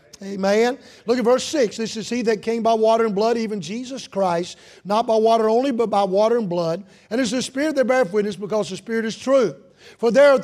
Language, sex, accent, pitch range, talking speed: English, male, American, 195-255 Hz, 240 wpm